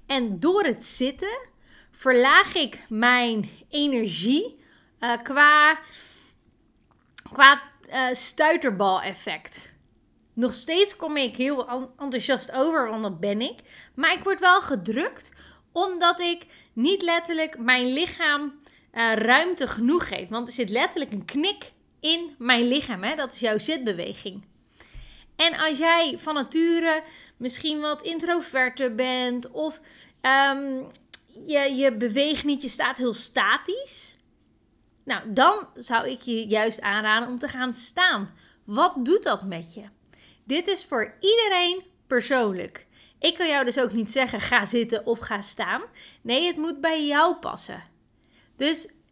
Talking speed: 135 wpm